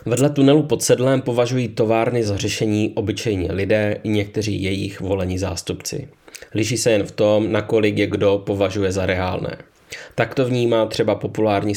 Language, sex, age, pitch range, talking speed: English, male, 20-39, 100-115 Hz, 165 wpm